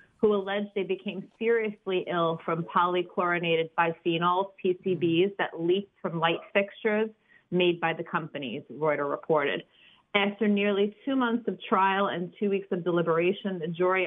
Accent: American